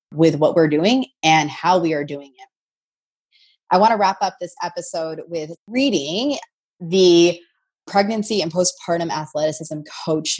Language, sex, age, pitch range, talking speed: English, female, 20-39, 150-185 Hz, 145 wpm